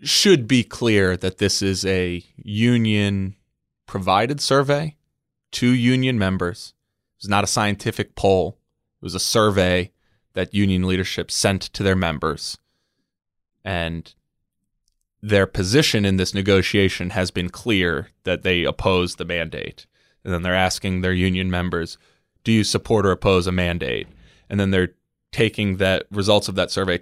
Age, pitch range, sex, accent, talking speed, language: 20-39, 95-110 Hz, male, American, 145 wpm, English